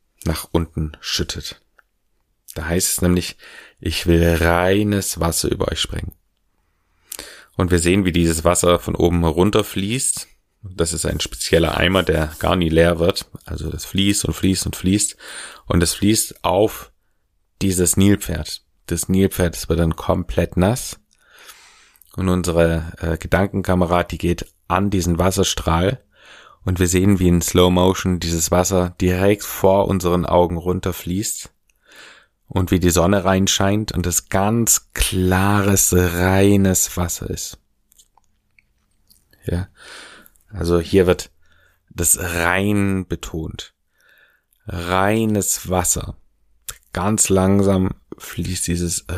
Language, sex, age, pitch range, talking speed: German, male, 30-49, 85-100 Hz, 125 wpm